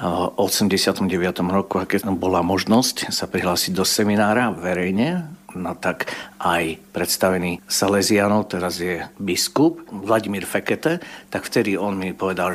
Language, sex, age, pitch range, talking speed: Slovak, male, 50-69, 95-110 Hz, 125 wpm